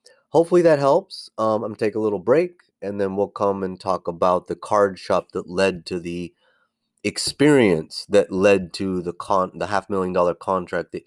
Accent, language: American, English